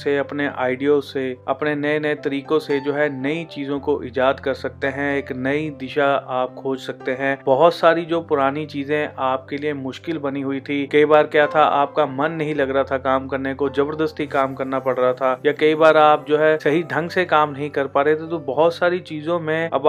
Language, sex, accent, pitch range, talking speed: Hindi, male, native, 140-160 Hz, 230 wpm